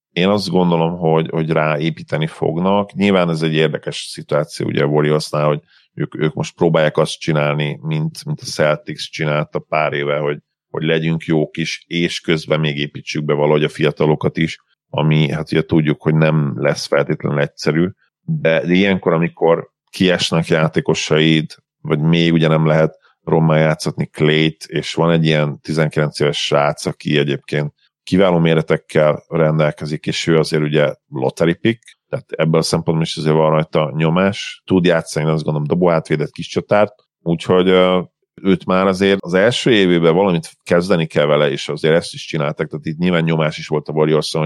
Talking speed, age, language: 170 wpm, 40-59, Hungarian